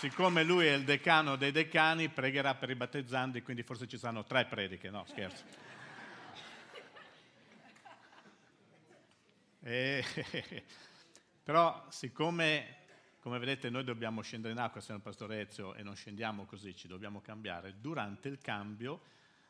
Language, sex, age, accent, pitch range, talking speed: Italian, male, 50-69, native, 110-140 Hz, 130 wpm